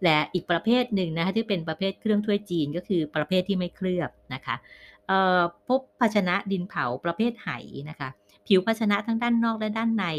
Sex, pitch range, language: female, 130-185 Hz, Thai